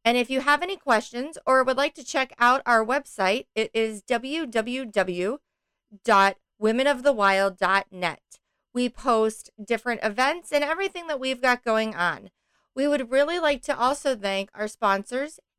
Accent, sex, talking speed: American, female, 140 wpm